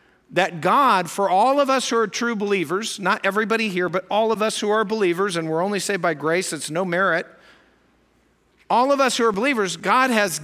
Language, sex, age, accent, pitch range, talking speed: English, male, 50-69, American, 175-240 Hz, 215 wpm